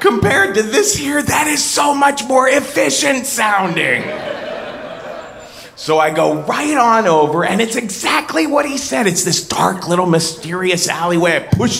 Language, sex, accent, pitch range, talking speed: English, male, American, 160-235 Hz, 155 wpm